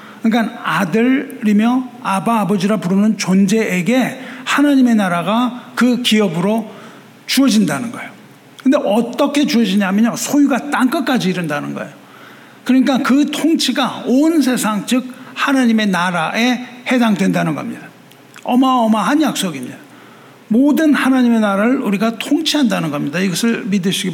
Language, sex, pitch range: Korean, male, 220-270 Hz